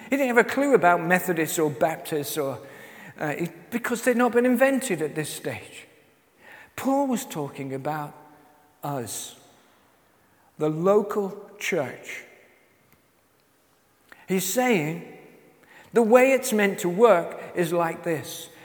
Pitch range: 160-235 Hz